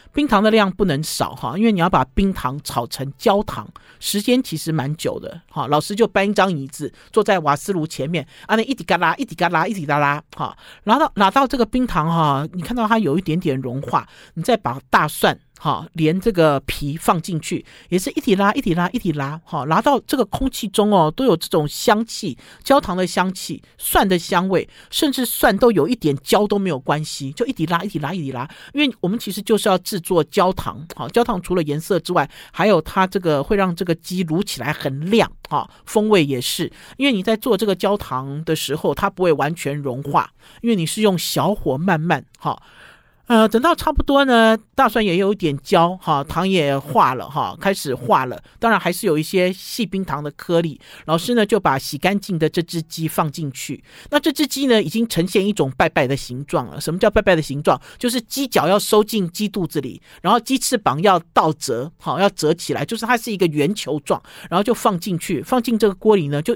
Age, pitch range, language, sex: 50-69, 155-220 Hz, Chinese, male